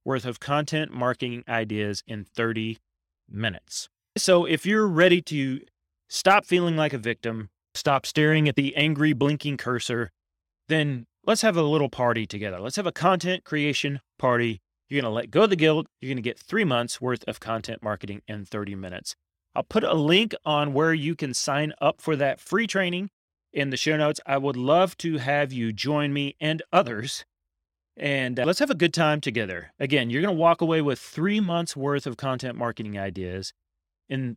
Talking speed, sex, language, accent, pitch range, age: 190 wpm, male, English, American, 120-165 Hz, 30-49